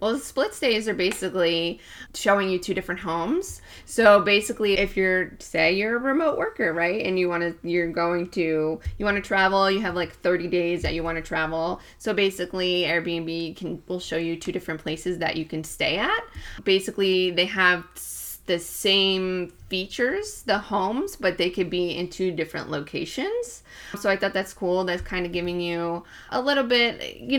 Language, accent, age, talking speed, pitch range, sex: English, American, 20-39, 190 wpm, 175-215 Hz, female